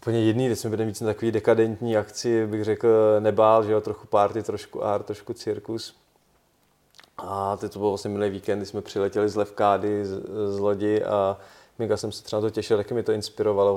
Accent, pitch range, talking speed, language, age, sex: native, 105-115 Hz, 200 wpm, Czech, 20-39, male